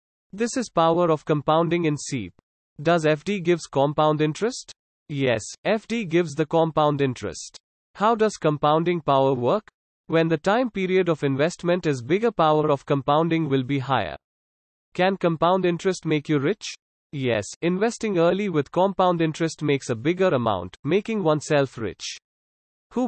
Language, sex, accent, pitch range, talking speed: English, male, Indian, 140-180 Hz, 150 wpm